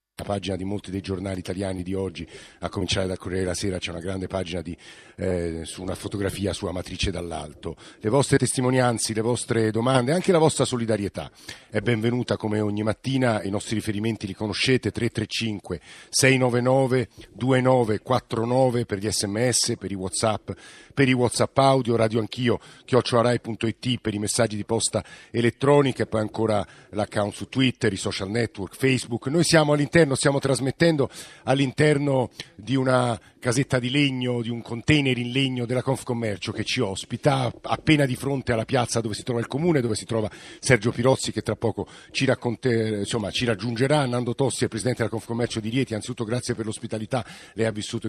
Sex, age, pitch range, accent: male, 50-69, 105-130 Hz, native